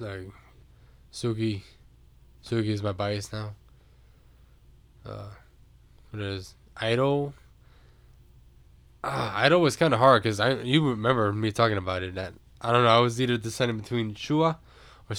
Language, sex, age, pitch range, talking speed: English, male, 10-29, 95-120 Hz, 140 wpm